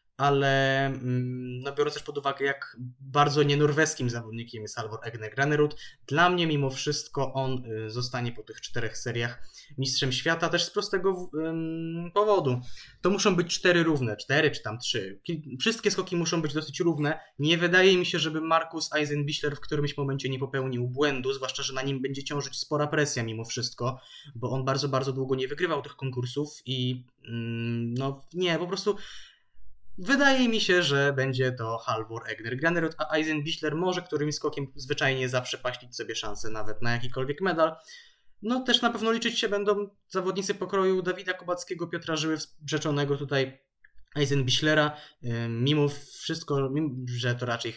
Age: 20-39